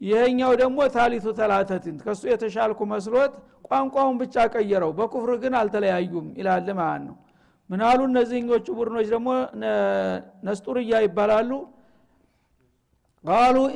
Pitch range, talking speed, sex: 185-245 Hz, 95 wpm, male